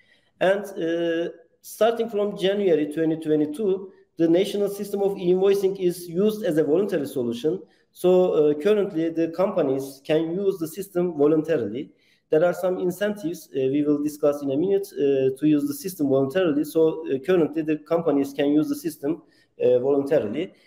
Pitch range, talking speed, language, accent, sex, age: 150-195 Hz, 160 wpm, English, Turkish, male, 50-69